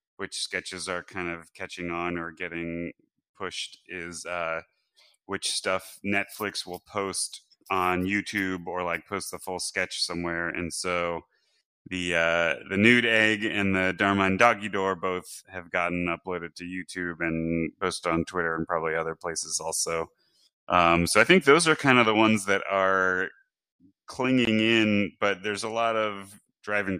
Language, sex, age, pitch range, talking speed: English, male, 20-39, 85-100 Hz, 160 wpm